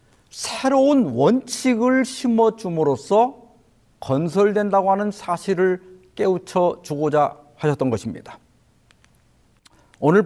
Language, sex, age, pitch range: Korean, male, 50-69, 135-225 Hz